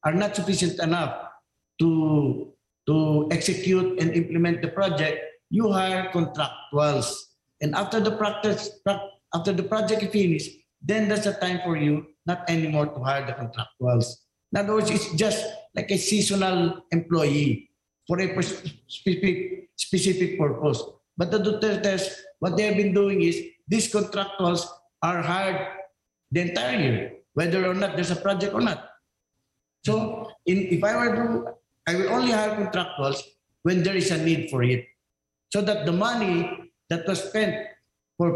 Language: English